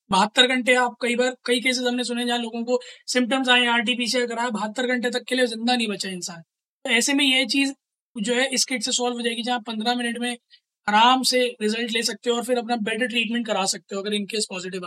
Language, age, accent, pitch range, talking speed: Hindi, 20-39, native, 225-255 Hz, 250 wpm